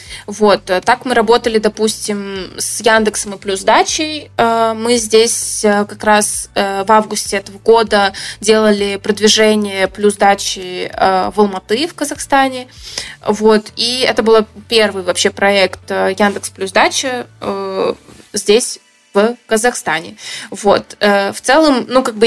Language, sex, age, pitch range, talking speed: Russian, female, 20-39, 205-240 Hz, 115 wpm